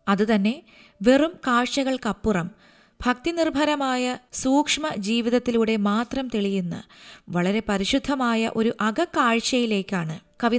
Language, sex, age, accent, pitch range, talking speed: Malayalam, female, 20-39, native, 195-250 Hz, 75 wpm